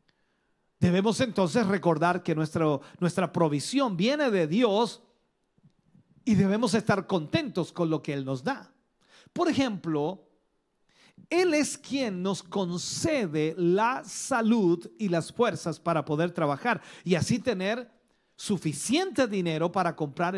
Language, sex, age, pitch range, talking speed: Spanish, male, 40-59, 150-200 Hz, 125 wpm